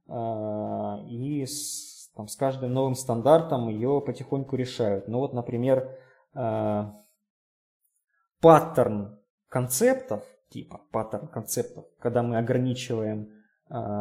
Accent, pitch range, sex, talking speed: native, 120-165 Hz, male, 70 wpm